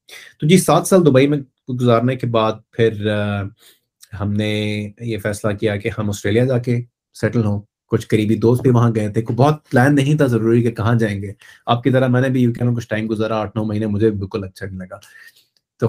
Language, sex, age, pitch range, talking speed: Urdu, male, 30-49, 105-125 Hz, 200 wpm